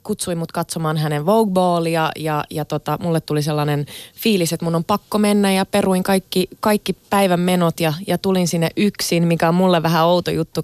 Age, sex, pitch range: 20-39, female, 150-190 Hz